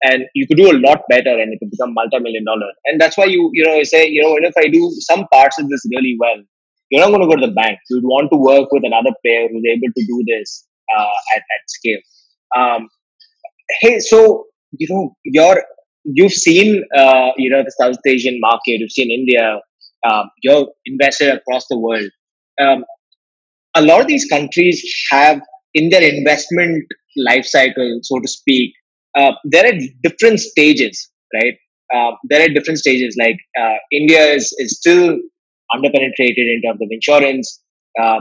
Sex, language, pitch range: male, English, 130-175 Hz